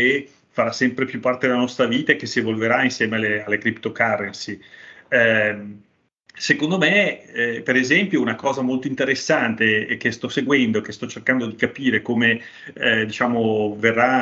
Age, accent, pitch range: 30-49, native, 115-130 Hz